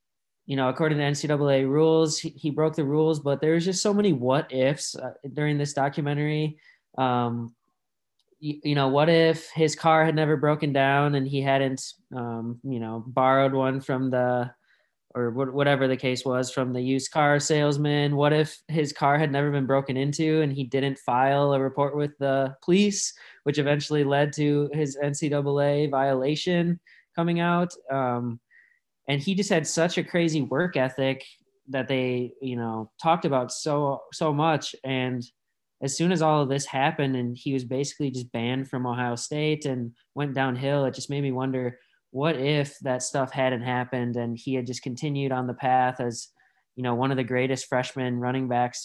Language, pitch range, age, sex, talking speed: English, 130-150 Hz, 20-39, male, 185 wpm